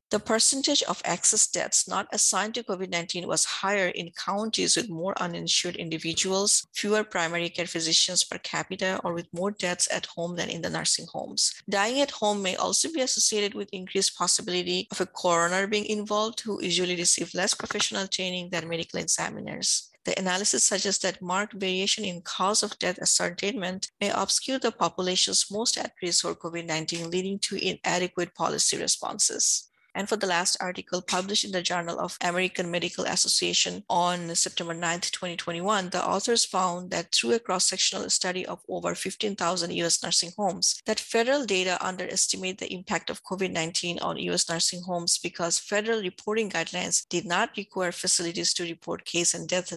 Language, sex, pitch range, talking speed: English, female, 175-200 Hz, 170 wpm